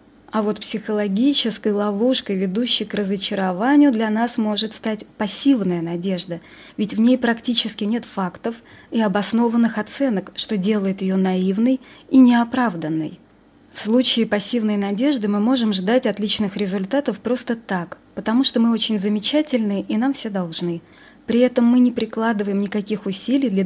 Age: 20-39